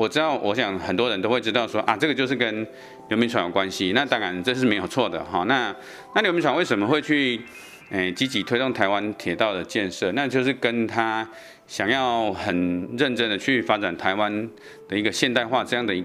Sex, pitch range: male, 95-125 Hz